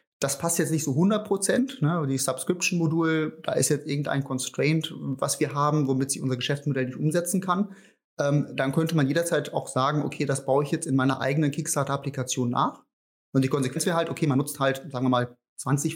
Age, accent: 30-49, German